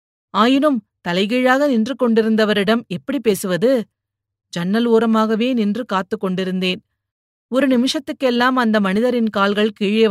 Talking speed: 100 wpm